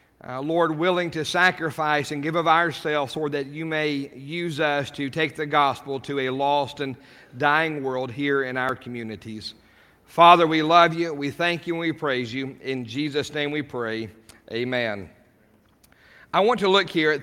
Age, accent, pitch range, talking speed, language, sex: 40-59, American, 145-175 Hz, 180 wpm, English, male